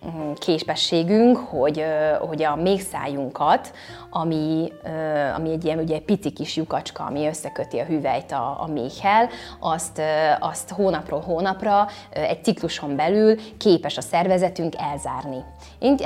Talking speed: 120 wpm